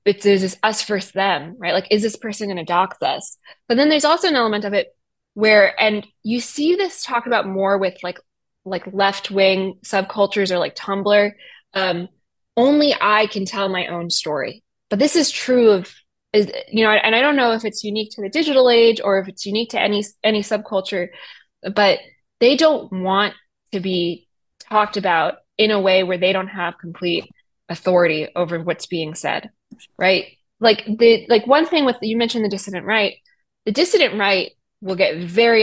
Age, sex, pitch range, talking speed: 20-39, female, 190-230 Hz, 190 wpm